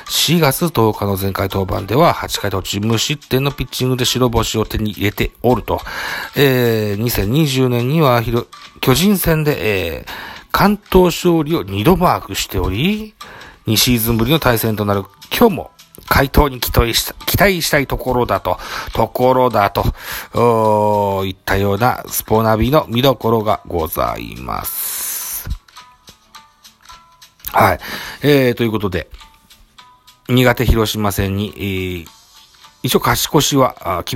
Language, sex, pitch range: Japanese, male, 100-130 Hz